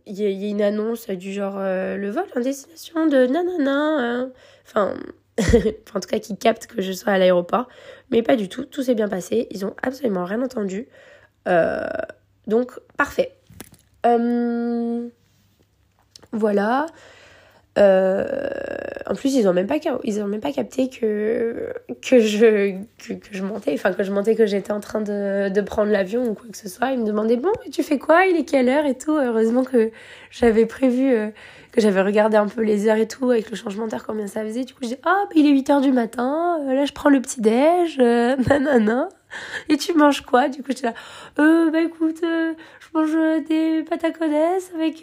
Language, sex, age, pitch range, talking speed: French, female, 20-39, 215-300 Hz, 205 wpm